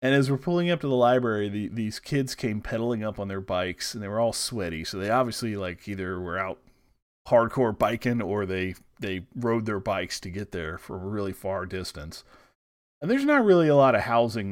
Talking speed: 220 wpm